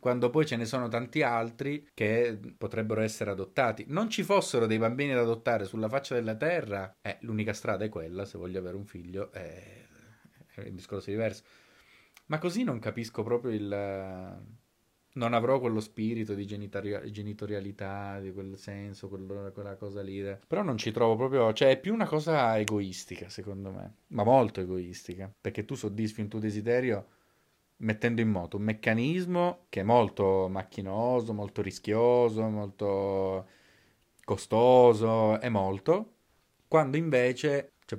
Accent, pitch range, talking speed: native, 100-120 Hz, 150 wpm